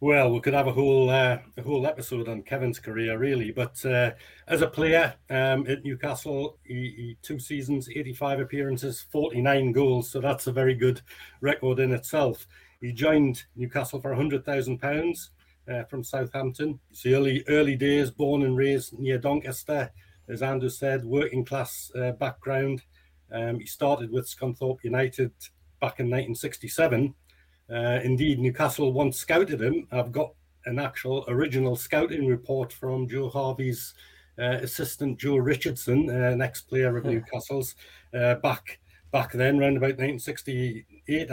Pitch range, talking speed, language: 125-140 Hz, 150 wpm, English